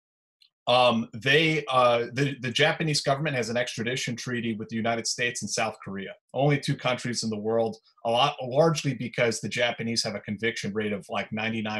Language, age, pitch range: English, 30-49, 115-140 Hz